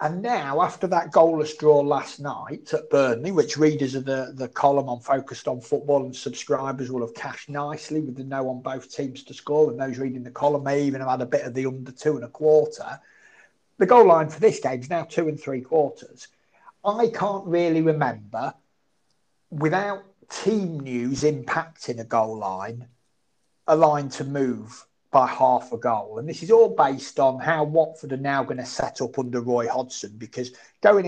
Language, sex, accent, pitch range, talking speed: English, male, British, 130-160 Hz, 195 wpm